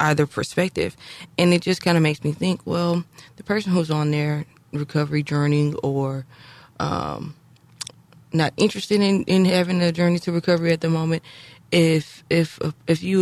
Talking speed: 165 wpm